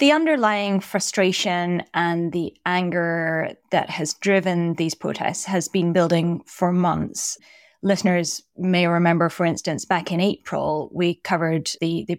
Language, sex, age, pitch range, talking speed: English, female, 20-39, 170-195 Hz, 140 wpm